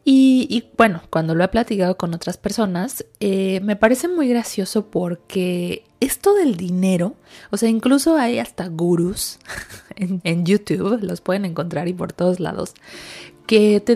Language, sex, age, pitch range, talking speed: Spanish, female, 20-39, 180-240 Hz, 160 wpm